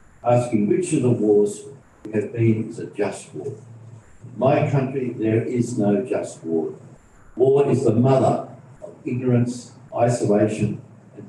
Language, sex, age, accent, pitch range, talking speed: English, male, 60-79, Australian, 110-135 Hz, 150 wpm